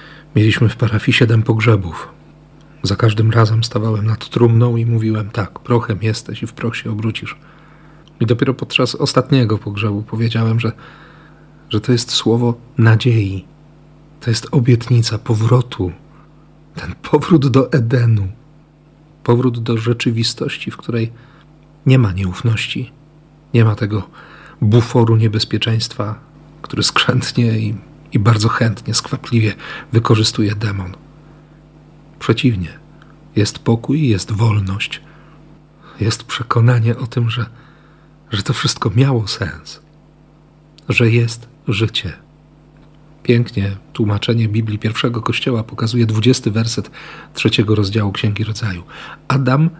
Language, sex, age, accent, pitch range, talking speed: Polish, male, 40-59, native, 110-150 Hz, 115 wpm